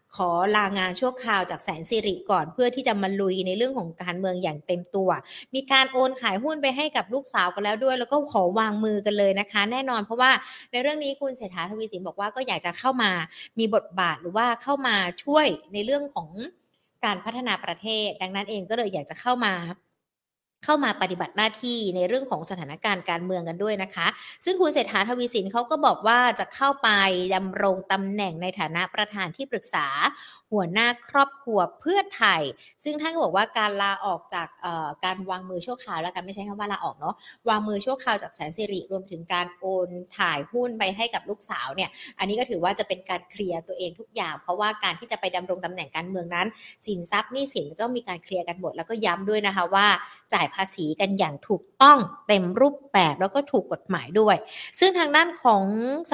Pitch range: 185-240 Hz